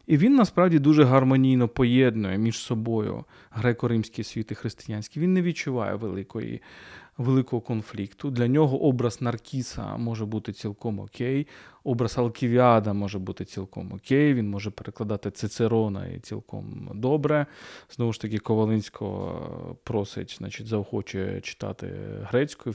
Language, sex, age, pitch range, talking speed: Ukrainian, male, 20-39, 110-145 Hz, 125 wpm